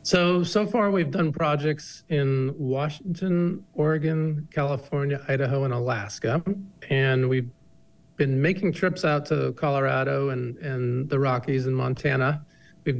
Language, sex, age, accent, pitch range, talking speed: English, male, 40-59, American, 125-150 Hz, 130 wpm